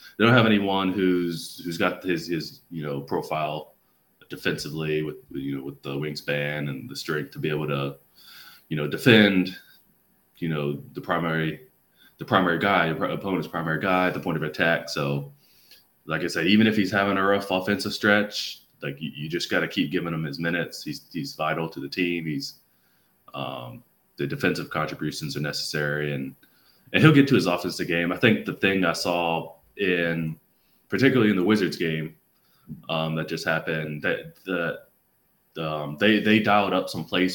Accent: American